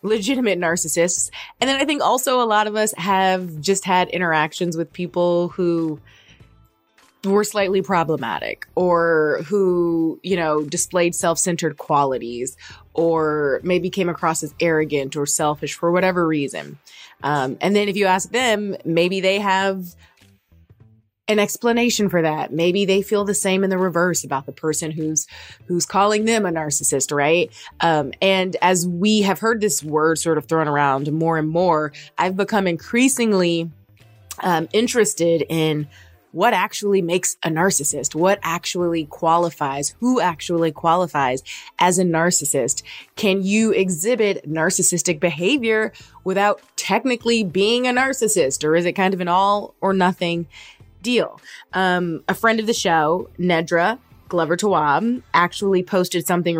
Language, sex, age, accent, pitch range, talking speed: English, female, 20-39, American, 155-195 Hz, 145 wpm